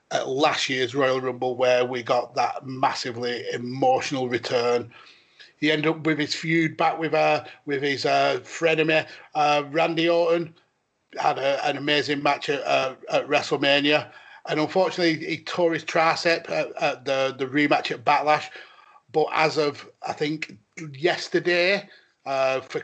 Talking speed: 150 wpm